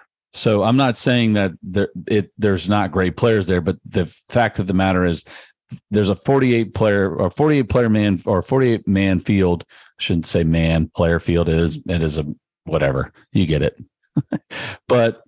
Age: 40-59